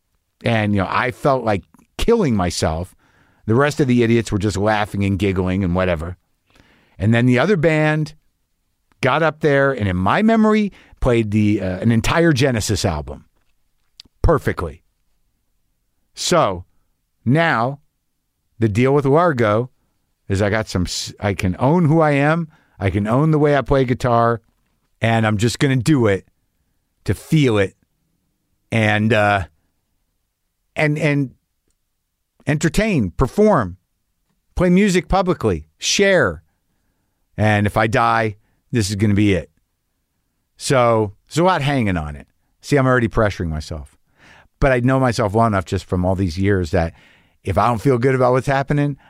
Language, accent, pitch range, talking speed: English, American, 95-135 Hz, 155 wpm